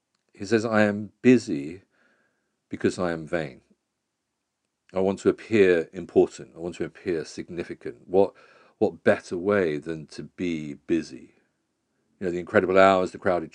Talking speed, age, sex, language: 150 wpm, 50-69, male, English